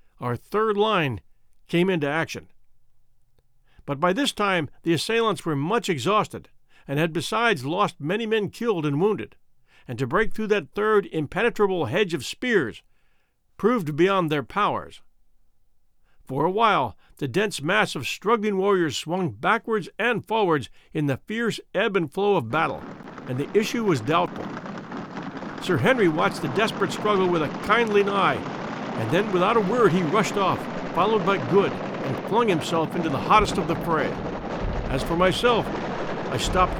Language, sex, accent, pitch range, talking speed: English, male, American, 150-210 Hz, 160 wpm